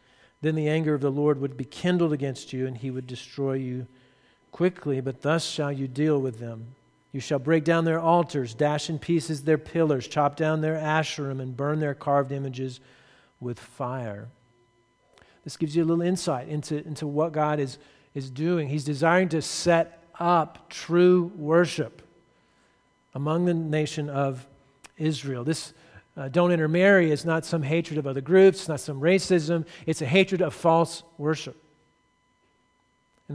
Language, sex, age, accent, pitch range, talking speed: English, male, 50-69, American, 145-175 Hz, 165 wpm